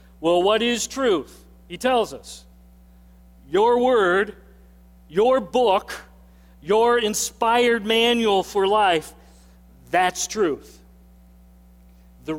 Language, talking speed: English, 90 wpm